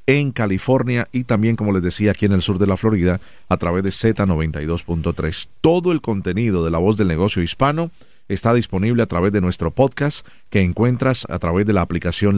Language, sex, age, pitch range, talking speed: Spanish, male, 40-59, 90-115 Hz, 200 wpm